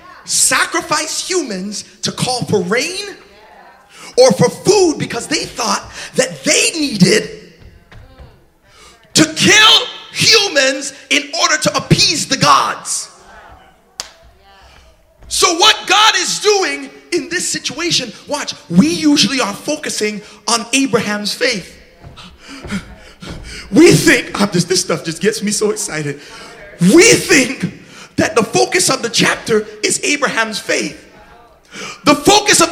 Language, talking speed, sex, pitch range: English, 115 wpm, male, 210-340 Hz